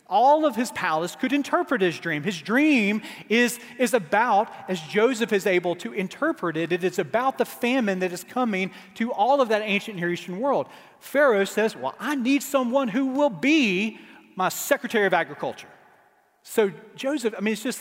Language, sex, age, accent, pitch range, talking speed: English, male, 40-59, American, 175-255 Hz, 180 wpm